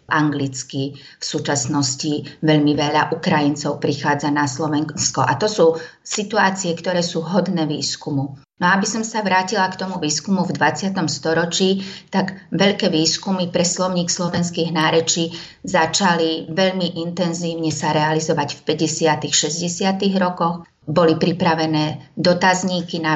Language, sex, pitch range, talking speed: Slovak, female, 155-175 Hz, 130 wpm